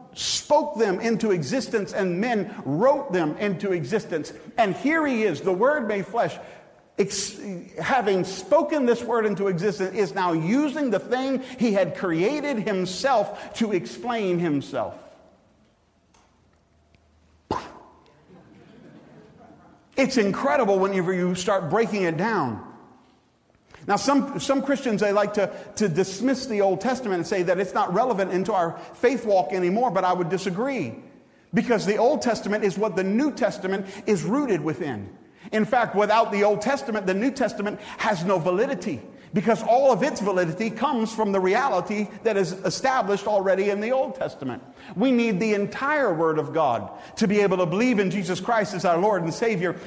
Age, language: 50-69, English